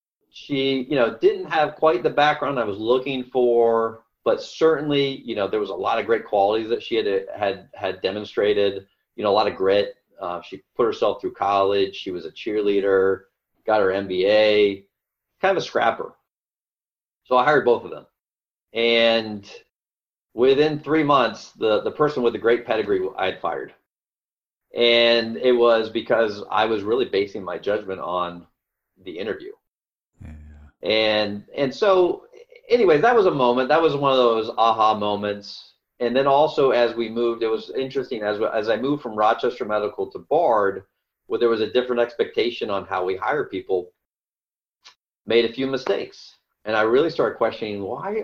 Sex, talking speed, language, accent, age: male, 175 wpm, English, American, 40-59